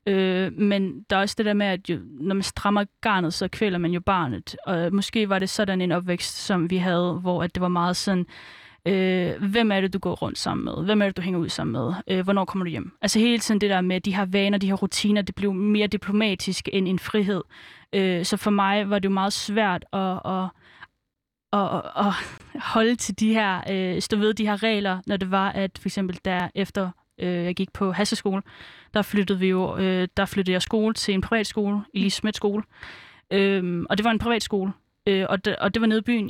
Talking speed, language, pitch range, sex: 220 wpm, Danish, 185-210 Hz, female